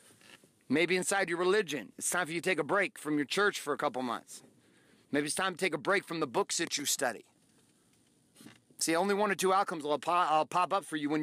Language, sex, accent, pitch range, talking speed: English, male, American, 175-235 Hz, 240 wpm